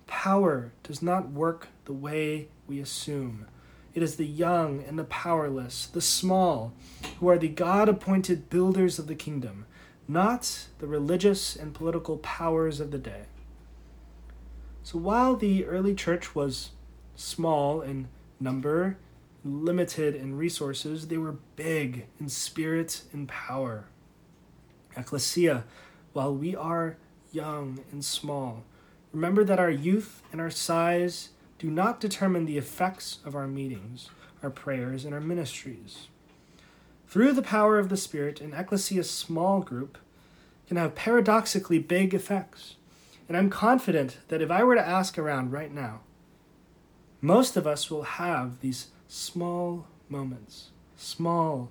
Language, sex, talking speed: English, male, 135 wpm